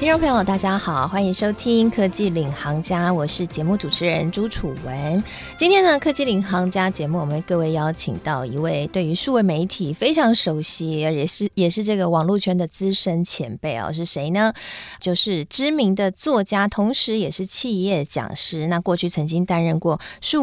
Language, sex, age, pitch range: Chinese, female, 20-39, 160-215 Hz